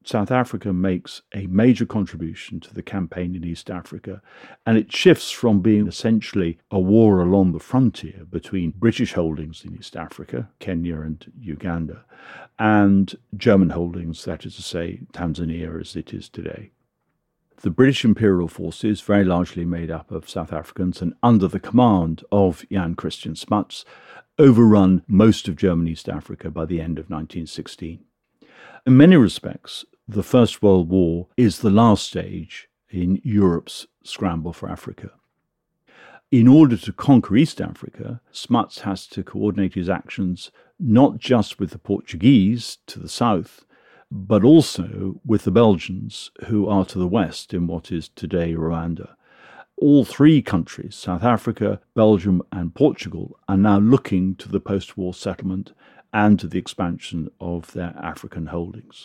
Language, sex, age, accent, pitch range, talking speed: English, male, 50-69, British, 85-105 Hz, 150 wpm